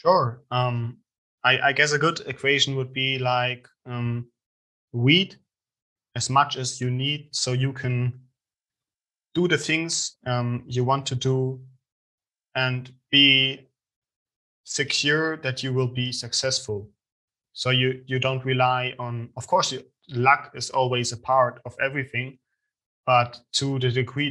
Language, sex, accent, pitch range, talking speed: English, male, German, 120-135 Hz, 140 wpm